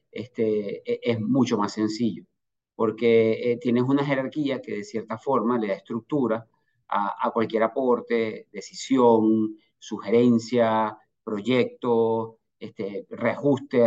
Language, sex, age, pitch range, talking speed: Spanish, male, 50-69, 115-145 Hz, 110 wpm